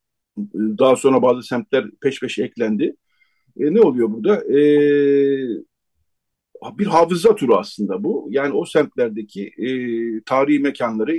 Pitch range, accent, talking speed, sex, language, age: 125-205 Hz, native, 125 wpm, male, Turkish, 50-69